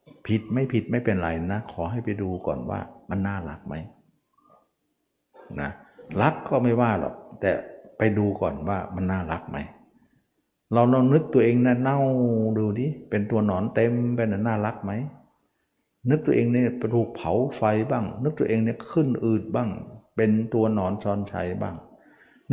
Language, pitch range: Thai, 100-130 Hz